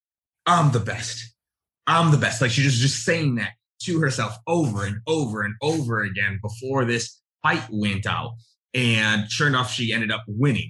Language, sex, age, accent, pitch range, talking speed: English, male, 30-49, American, 110-125 Hz, 180 wpm